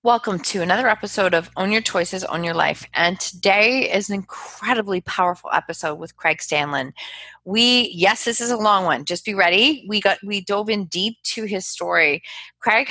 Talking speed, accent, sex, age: 190 wpm, American, female, 30-49